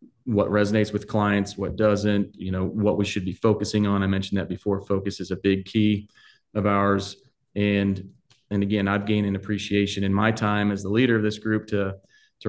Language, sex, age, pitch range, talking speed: English, male, 30-49, 100-110 Hz, 205 wpm